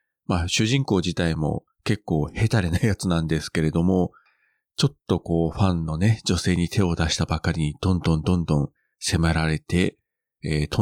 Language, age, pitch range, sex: Japanese, 40-59, 85-105 Hz, male